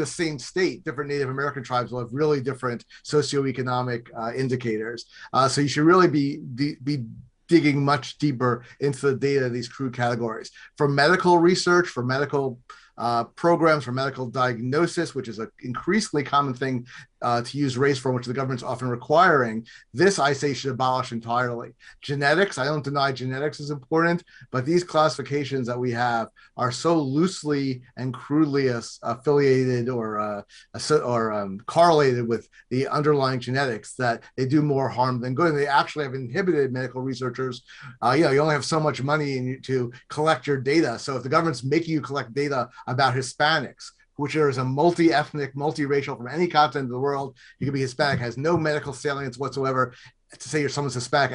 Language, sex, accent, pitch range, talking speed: English, male, American, 125-150 Hz, 180 wpm